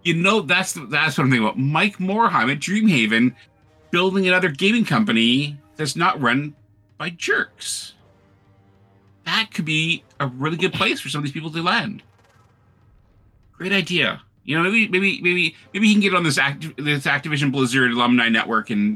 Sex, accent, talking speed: male, American, 175 wpm